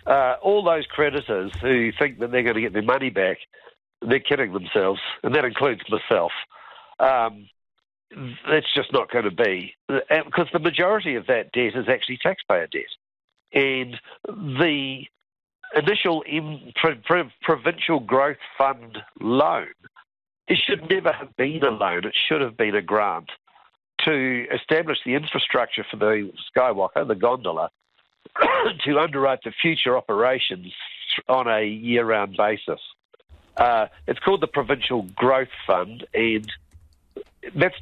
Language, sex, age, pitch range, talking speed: English, male, 60-79, 115-155 Hz, 135 wpm